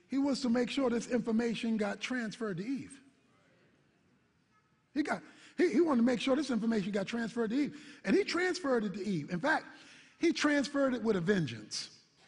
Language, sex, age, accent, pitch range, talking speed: English, male, 50-69, American, 225-335 Hz, 190 wpm